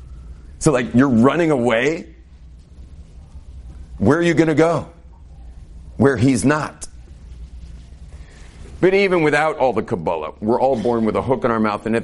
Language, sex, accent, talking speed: English, male, American, 155 wpm